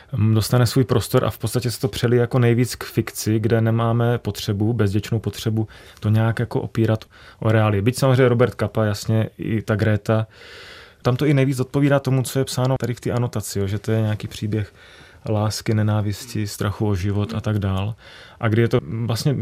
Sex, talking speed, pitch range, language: male, 195 wpm, 105-125 Hz, Czech